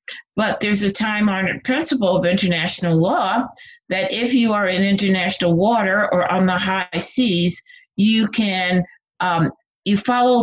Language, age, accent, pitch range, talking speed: English, 50-69, American, 175-230 Hz, 150 wpm